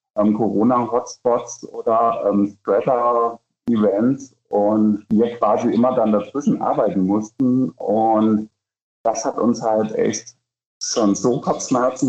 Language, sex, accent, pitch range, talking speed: German, male, German, 105-125 Hz, 105 wpm